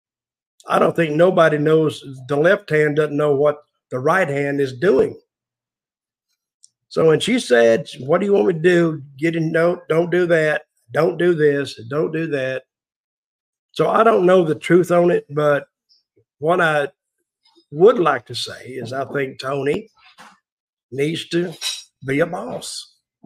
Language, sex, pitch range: English, male, 145-175 Hz